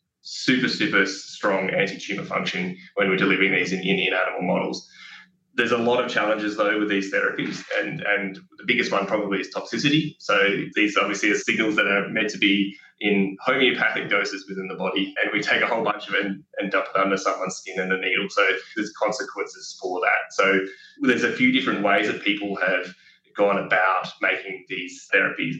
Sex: male